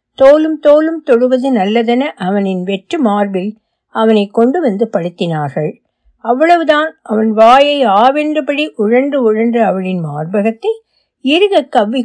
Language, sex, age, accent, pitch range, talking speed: Tamil, female, 60-79, native, 195-280 Hz, 105 wpm